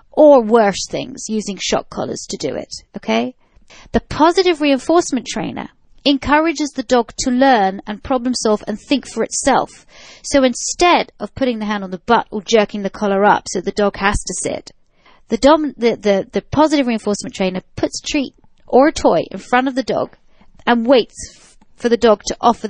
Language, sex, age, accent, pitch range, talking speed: English, female, 30-49, British, 200-265 Hz, 180 wpm